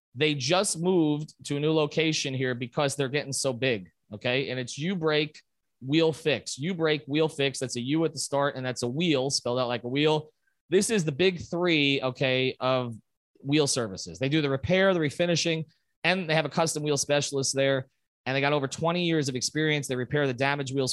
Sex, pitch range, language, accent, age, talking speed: male, 130-160 Hz, English, American, 30-49, 215 wpm